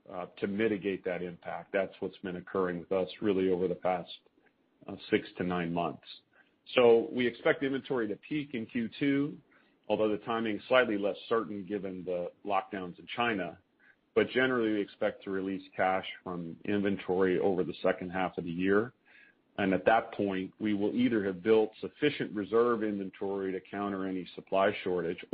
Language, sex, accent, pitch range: English, male, American, 95-110 Hz